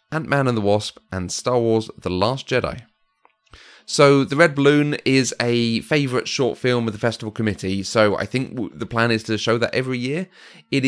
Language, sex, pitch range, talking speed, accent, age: English, male, 105-140 Hz, 195 wpm, British, 30-49